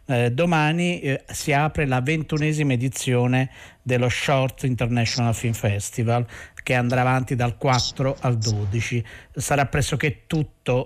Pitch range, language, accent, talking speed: 120-140 Hz, Italian, native, 125 wpm